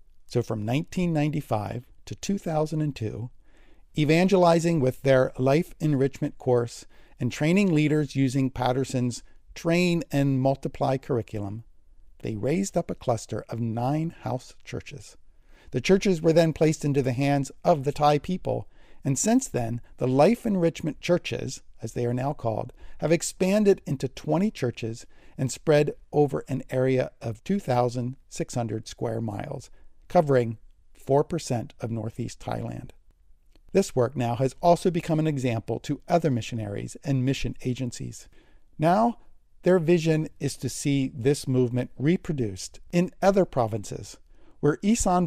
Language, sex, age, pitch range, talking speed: English, male, 50-69, 120-160 Hz, 135 wpm